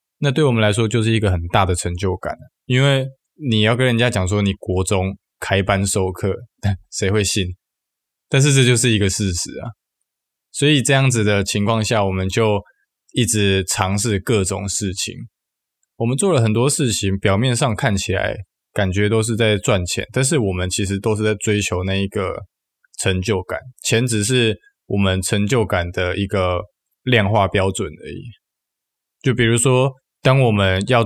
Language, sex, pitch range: Chinese, male, 95-115 Hz